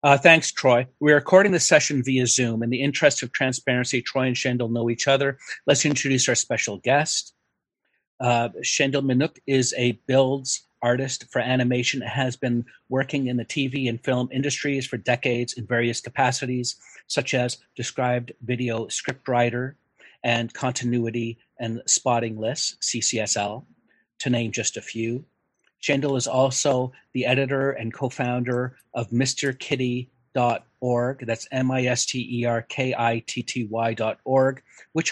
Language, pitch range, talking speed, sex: English, 120-135 Hz, 130 wpm, male